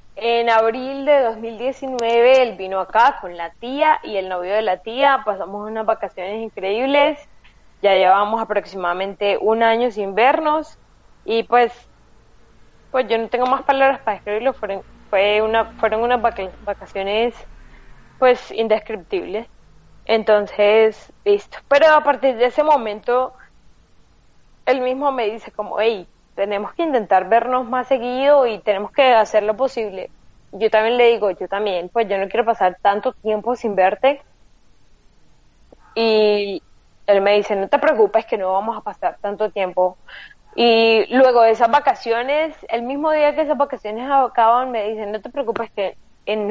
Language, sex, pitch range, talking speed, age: Spanish, female, 205-255 Hz, 150 wpm, 20-39